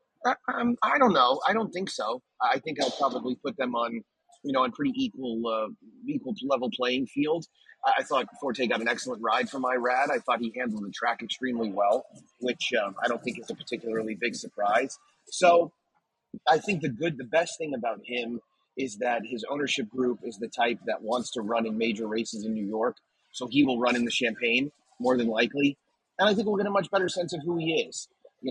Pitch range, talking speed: 120-170 Hz, 220 wpm